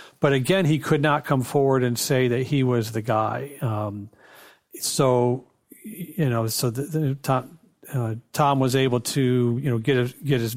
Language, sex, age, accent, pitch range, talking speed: English, male, 40-59, American, 120-140 Hz, 185 wpm